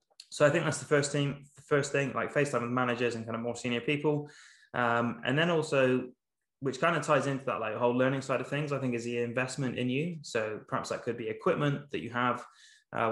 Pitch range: 115-130 Hz